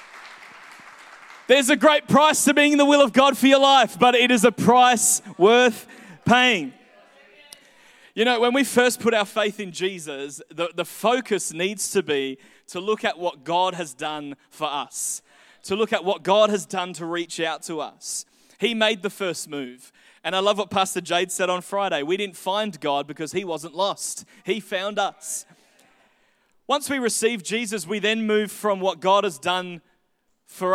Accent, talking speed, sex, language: Australian, 185 wpm, male, English